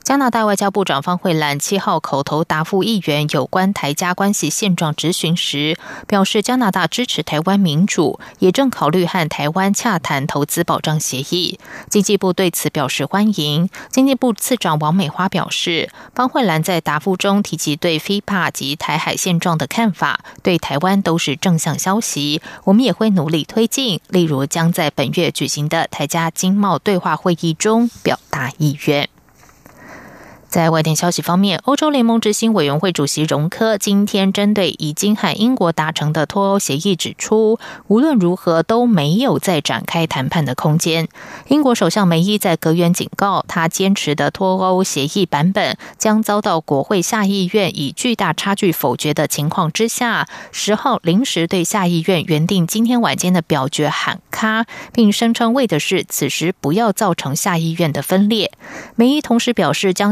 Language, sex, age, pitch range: German, female, 20-39, 155-205 Hz